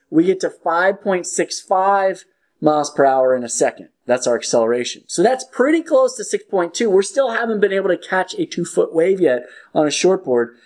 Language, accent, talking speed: English, American, 185 wpm